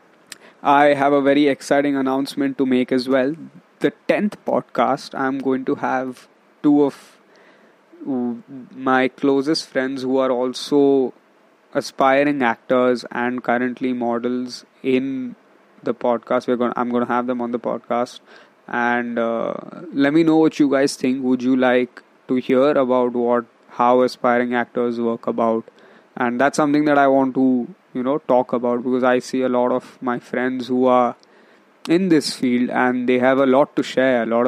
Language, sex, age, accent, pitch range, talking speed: English, male, 20-39, Indian, 125-135 Hz, 170 wpm